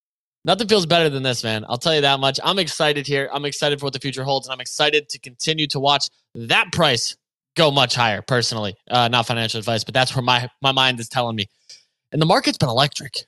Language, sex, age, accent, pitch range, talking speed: English, male, 20-39, American, 130-160 Hz, 235 wpm